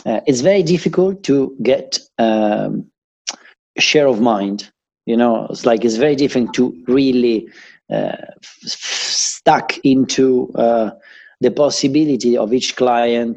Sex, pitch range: male, 110-135 Hz